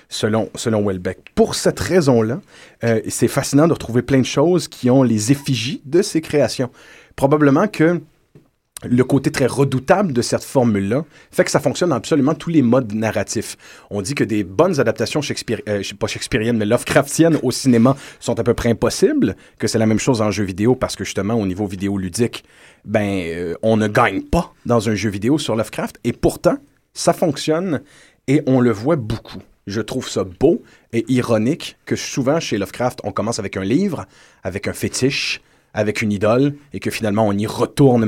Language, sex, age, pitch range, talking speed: French, male, 30-49, 105-140 Hz, 190 wpm